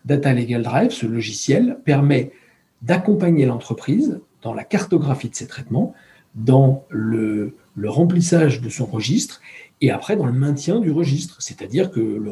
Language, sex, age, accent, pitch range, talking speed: French, male, 40-59, French, 125-170 Hz, 150 wpm